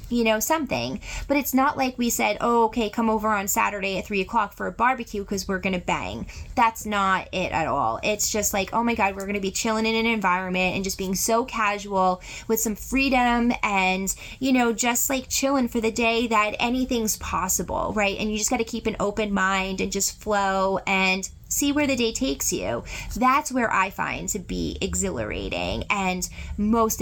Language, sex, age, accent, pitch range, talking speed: English, female, 20-39, American, 190-240 Hz, 210 wpm